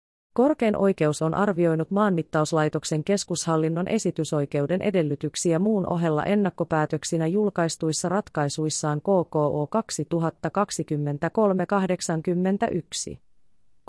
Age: 30-49